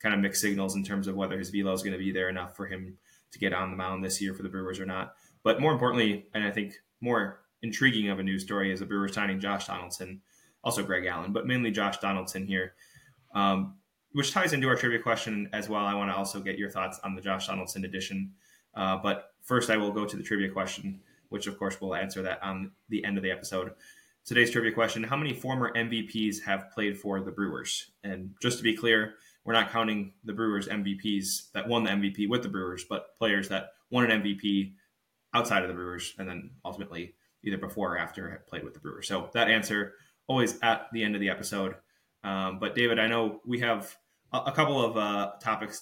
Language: English